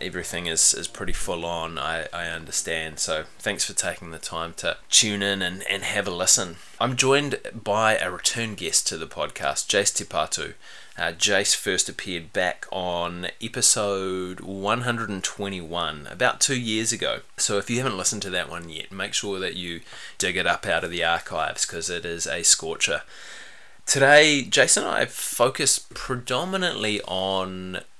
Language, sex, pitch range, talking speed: English, male, 90-110 Hz, 165 wpm